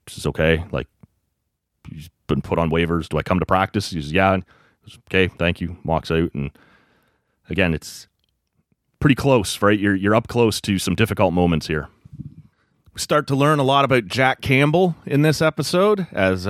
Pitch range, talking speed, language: 90-110 Hz, 185 wpm, English